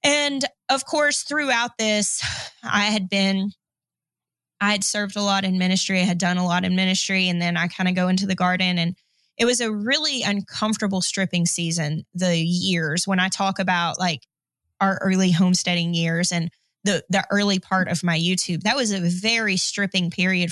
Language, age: English, 20-39